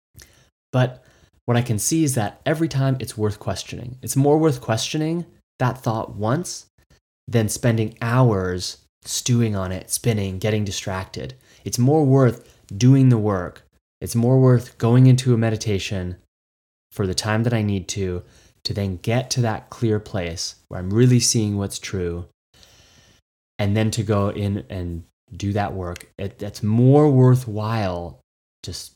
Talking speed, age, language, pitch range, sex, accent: 155 wpm, 20-39, English, 95-125 Hz, male, American